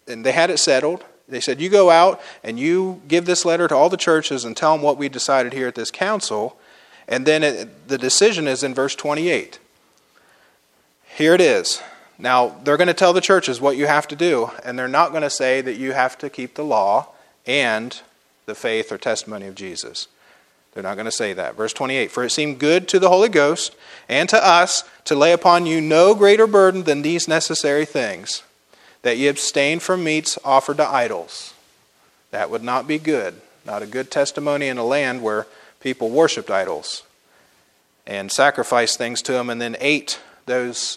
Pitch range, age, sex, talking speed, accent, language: 125-170 Hz, 40-59, male, 200 wpm, American, English